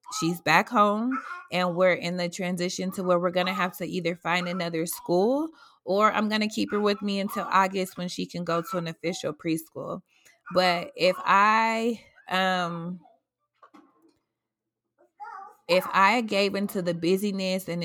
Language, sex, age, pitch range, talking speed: English, female, 20-39, 170-195 Hz, 155 wpm